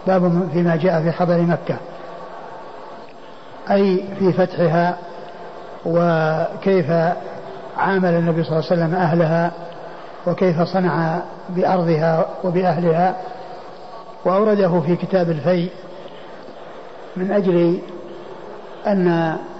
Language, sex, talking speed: Arabic, male, 85 wpm